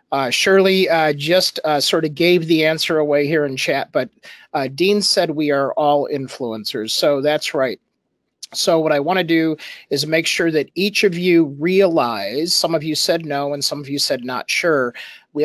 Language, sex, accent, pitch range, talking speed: English, male, American, 140-175 Hz, 200 wpm